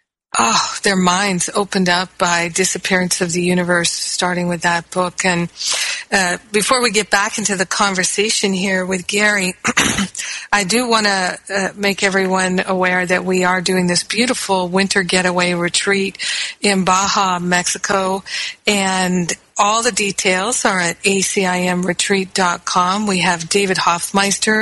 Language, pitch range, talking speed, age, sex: English, 180-200 Hz, 135 wpm, 50-69, female